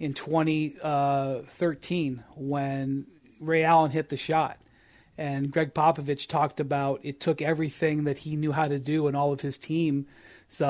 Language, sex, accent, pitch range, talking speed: English, male, American, 140-175 Hz, 150 wpm